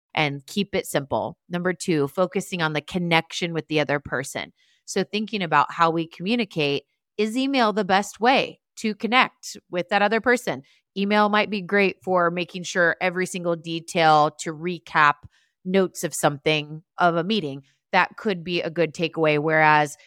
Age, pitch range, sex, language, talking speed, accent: 30-49, 155-190 Hz, female, English, 165 wpm, American